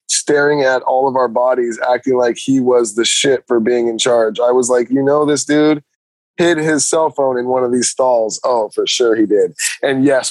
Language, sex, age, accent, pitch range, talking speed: English, male, 20-39, American, 120-145 Hz, 225 wpm